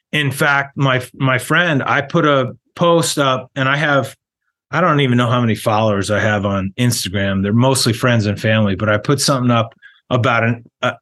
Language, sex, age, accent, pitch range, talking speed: English, male, 30-49, American, 115-140 Hz, 200 wpm